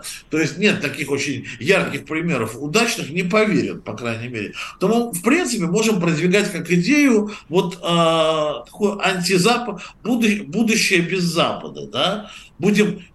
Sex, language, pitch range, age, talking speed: male, Russian, 145-205 Hz, 50-69, 135 wpm